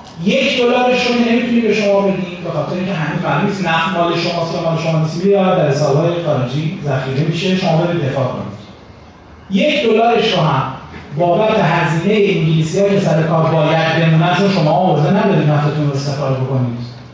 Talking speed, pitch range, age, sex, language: 155 wpm, 160-220 Hz, 30-49, male, Persian